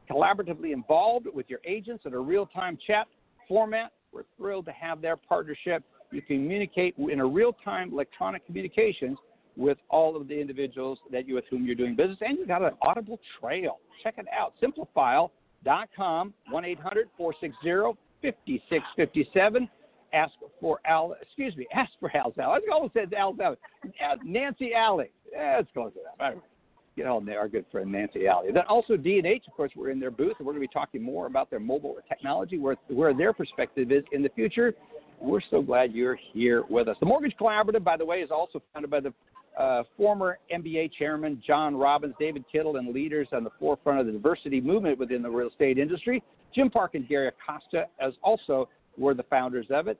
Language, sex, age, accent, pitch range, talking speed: English, male, 60-79, American, 140-220 Hz, 195 wpm